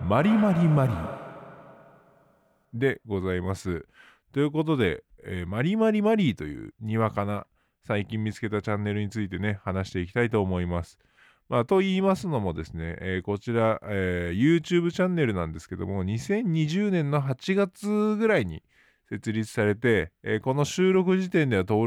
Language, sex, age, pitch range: Japanese, male, 20-39, 100-155 Hz